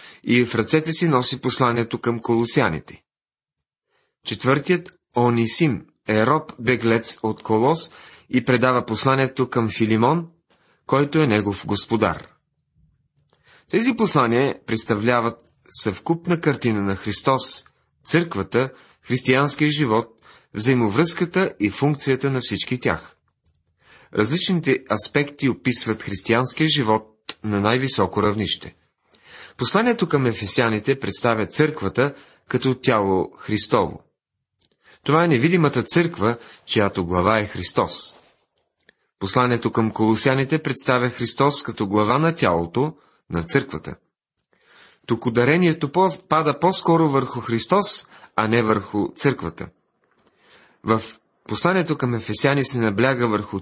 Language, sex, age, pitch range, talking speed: Bulgarian, male, 30-49, 110-145 Hz, 105 wpm